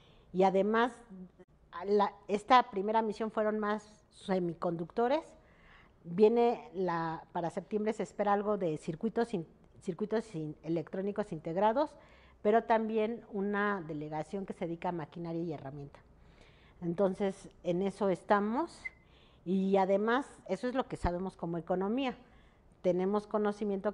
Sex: female